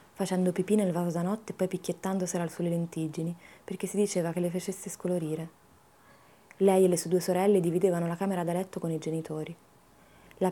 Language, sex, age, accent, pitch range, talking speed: English, female, 20-39, Italian, 170-195 Hz, 190 wpm